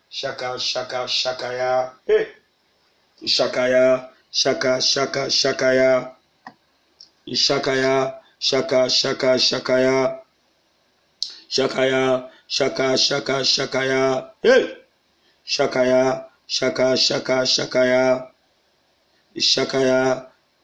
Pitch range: 130-140 Hz